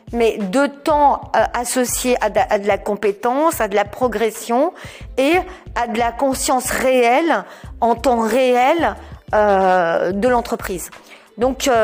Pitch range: 205-260 Hz